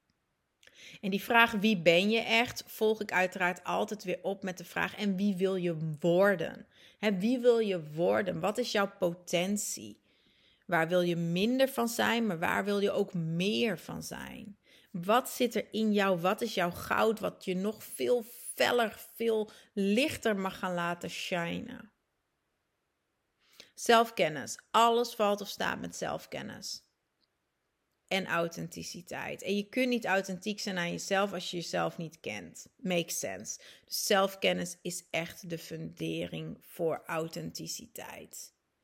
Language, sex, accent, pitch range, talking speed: Dutch, female, Dutch, 175-220 Hz, 145 wpm